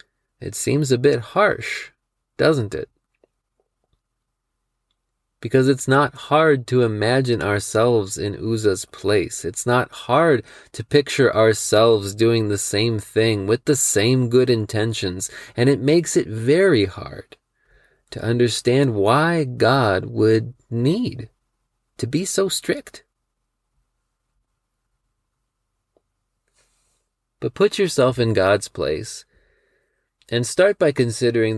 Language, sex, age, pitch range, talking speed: English, male, 30-49, 110-135 Hz, 110 wpm